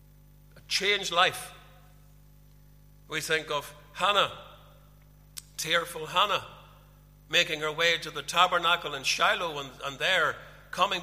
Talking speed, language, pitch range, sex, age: 110 wpm, English, 145-175 Hz, male, 60-79